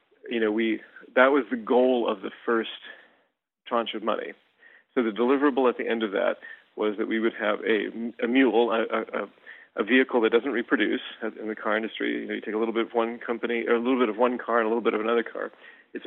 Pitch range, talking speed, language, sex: 110-125 Hz, 245 wpm, English, male